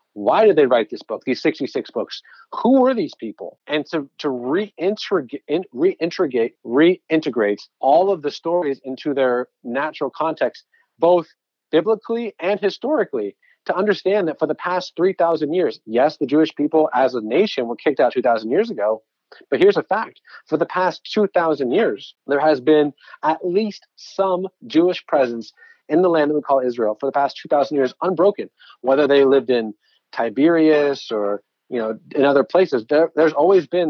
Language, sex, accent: English, male, American